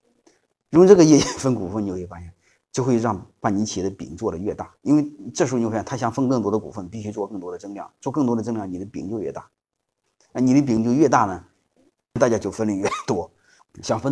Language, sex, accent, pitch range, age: Chinese, male, native, 100-125 Hz, 30-49